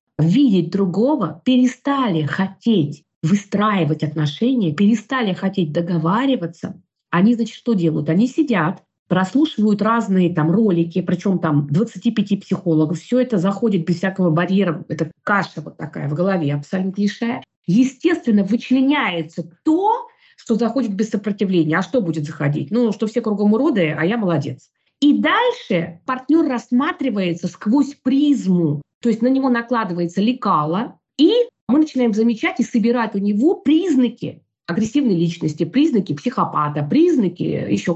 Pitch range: 170-245 Hz